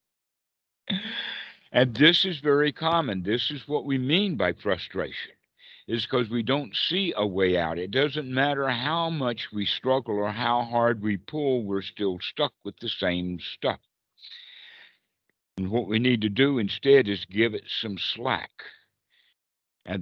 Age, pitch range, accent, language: 60-79, 105-135 Hz, American, English